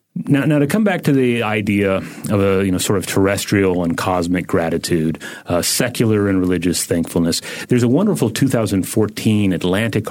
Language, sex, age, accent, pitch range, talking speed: English, male, 30-49, American, 100-130 Hz, 165 wpm